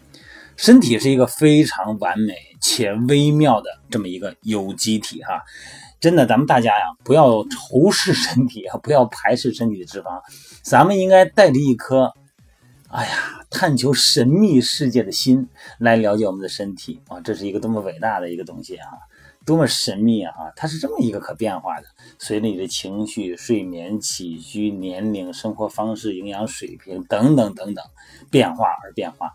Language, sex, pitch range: Chinese, male, 105-130 Hz